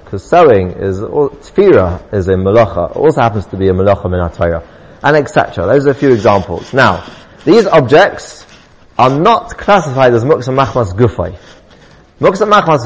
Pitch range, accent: 100-140 Hz, British